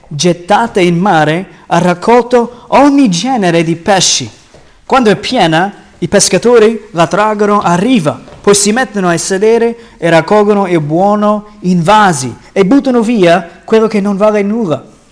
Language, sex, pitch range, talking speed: Italian, male, 145-190 Hz, 145 wpm